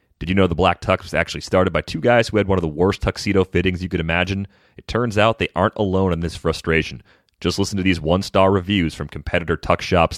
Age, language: 30-49, English